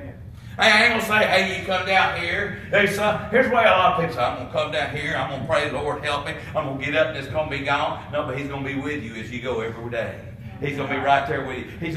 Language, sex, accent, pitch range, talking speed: English, male, American, 115-145 Hz, 330 wpm